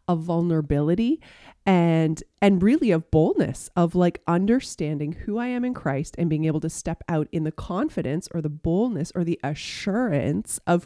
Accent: American